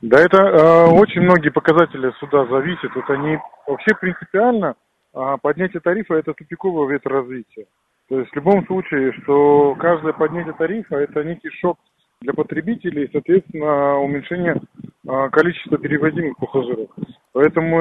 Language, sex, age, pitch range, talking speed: Russian, male, 20-39, 145-175 Hz, 145 wpm